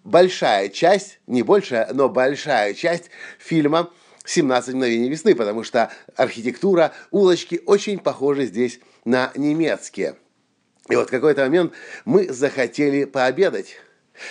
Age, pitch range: 50-69, 130-175 Hz